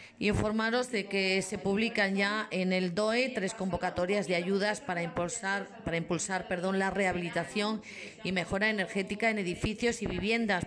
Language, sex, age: Spanish, female, 40-59